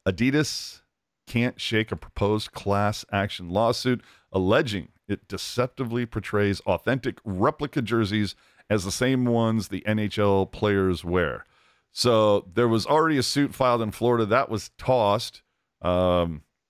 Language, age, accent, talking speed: English, 50-69, American, 130 wpm